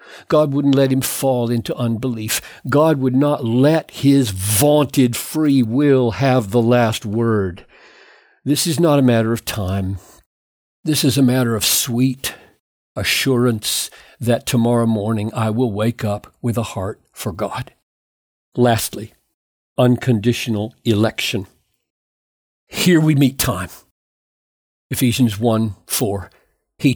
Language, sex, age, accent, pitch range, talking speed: English, male, 50-69, American, 110-135 Hz, 125 wpm